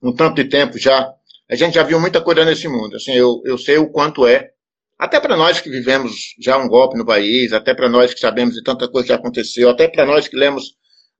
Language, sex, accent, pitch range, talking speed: Portuguese, male, Brazilian, 135-215 Hz, 240 wpm